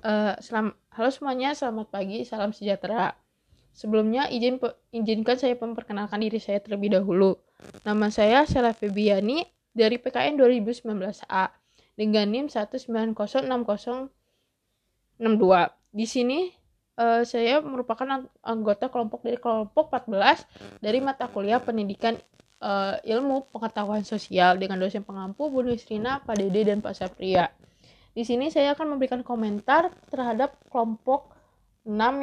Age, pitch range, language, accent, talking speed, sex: 20-39, 210-255 Hz, Indonesian, native, 125 wpm, female